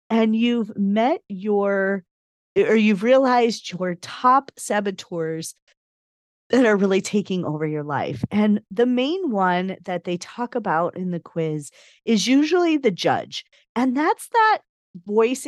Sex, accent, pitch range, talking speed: female, American, 180-245 Hz, 140 wpm